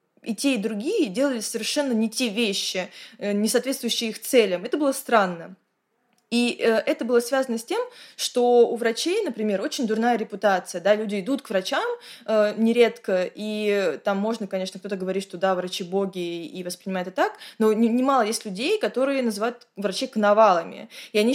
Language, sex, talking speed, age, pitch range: Russian, female, 165 wpm, 20-39, 205-240 Hz